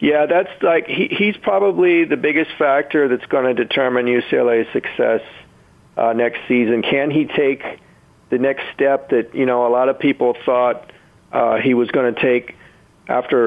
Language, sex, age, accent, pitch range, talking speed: English, male, 40-59, American, 115-130 Hz, 175 wpm